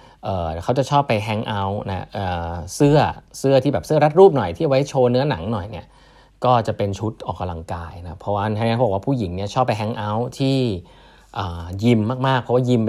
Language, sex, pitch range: Thai, male, 95-130 Hz